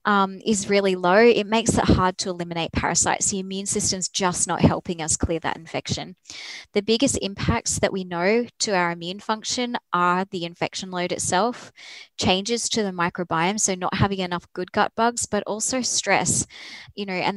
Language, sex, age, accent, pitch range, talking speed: English, female, 20-39, Australian, 175-205 Hz, 185 wpm